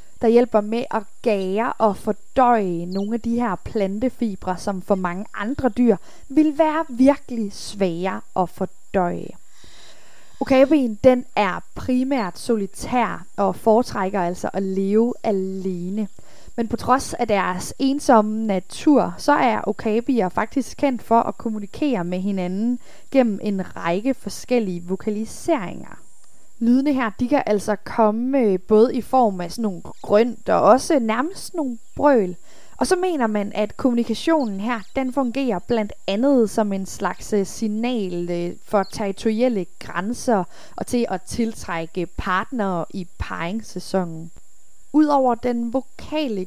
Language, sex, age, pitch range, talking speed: Danish, female, 20-39, 195-250 Hz, 130 wpm